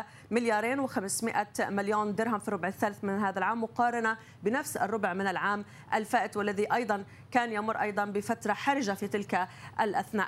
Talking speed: 150 wpm